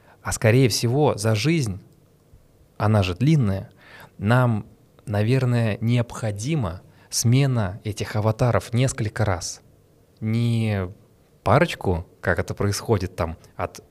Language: Russian